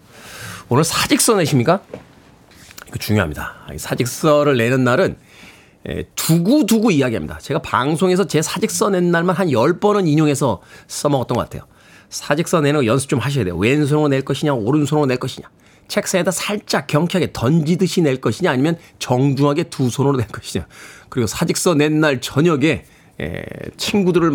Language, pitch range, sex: Korean, 130-185 Hz, male